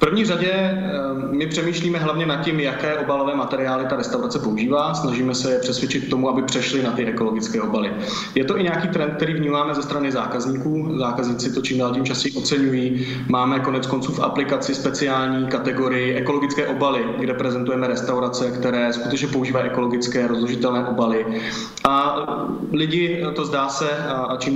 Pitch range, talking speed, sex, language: 125-140 Hz, 165 wpm, male, Slovak